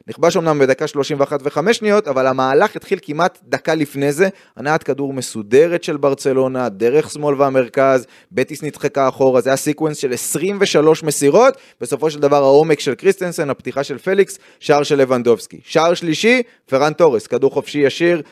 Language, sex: Hebrew, male